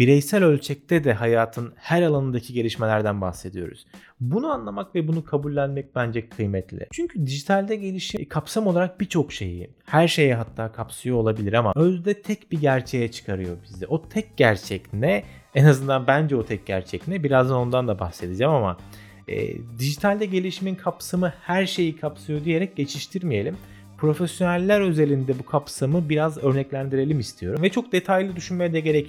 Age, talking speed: 30-49, 150 wpm